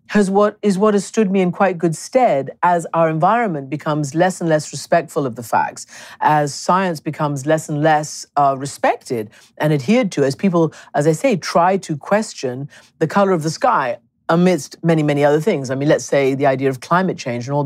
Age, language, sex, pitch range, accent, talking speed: 50-69, English, female, 145-195 Hz, British, 210 wpm